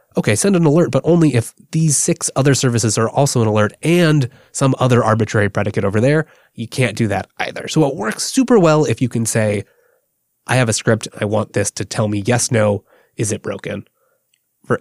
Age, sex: 20-39, male